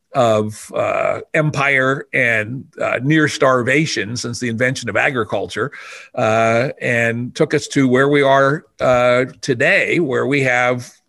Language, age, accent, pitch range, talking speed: English, 50-69, American, 125-165 Hz, 135 wpm